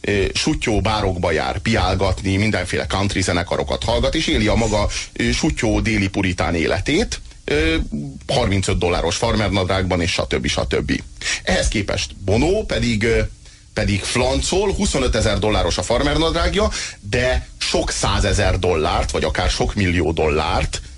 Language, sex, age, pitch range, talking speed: Hungarian, male, 30-49, 95-110 Hz, 130 wpm